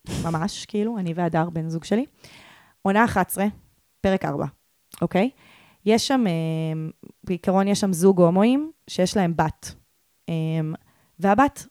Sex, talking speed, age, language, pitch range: female, 120 wpm, 20-39, Hebrew, 165-215 Hz